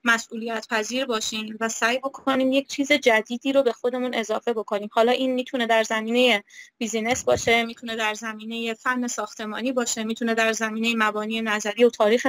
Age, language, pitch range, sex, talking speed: 20-39, Persian, 225-255 Hz, female, 165 wpm